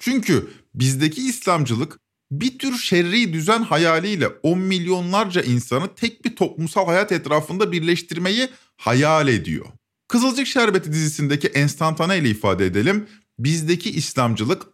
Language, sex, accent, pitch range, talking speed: Turkish, male, native, 125-185 Hz, 110 wpm